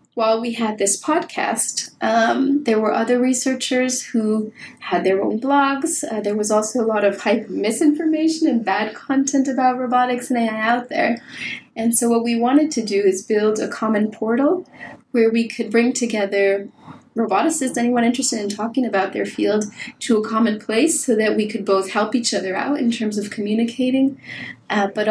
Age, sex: 20-39, female